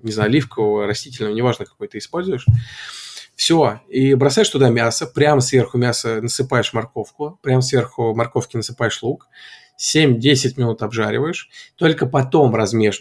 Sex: male